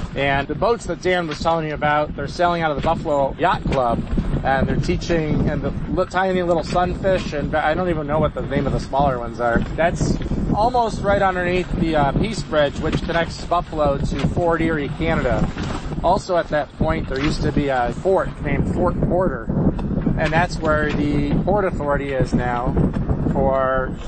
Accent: American